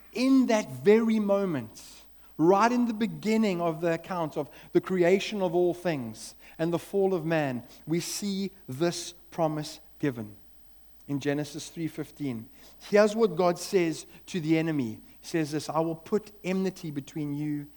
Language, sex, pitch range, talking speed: English, male, 125-190 Hz, 155 wpm